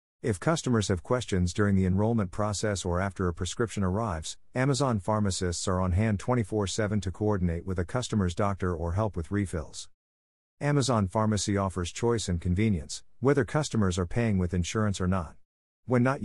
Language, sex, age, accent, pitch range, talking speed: English, male, 50-69, American, 90-115 Hz, 165 wpm